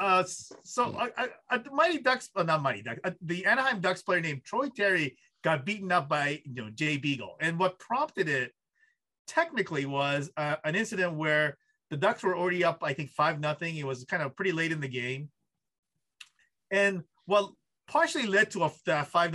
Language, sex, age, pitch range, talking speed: English, male, 30-49, 150-200 Hz, 185 wpm